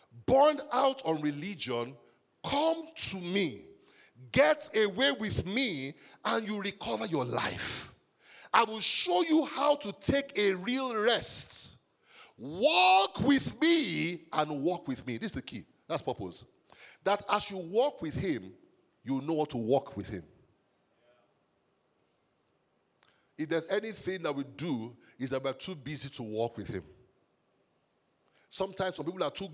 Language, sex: English, male